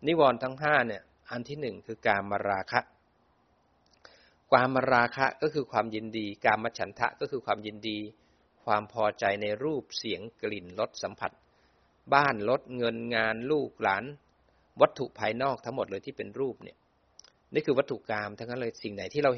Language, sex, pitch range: Thai, male, 105-130 Hz